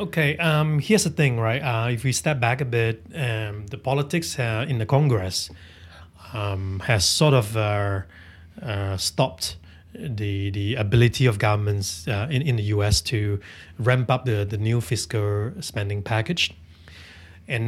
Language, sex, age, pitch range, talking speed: English, male, 30-49, 100-135 Hz, 160 wpm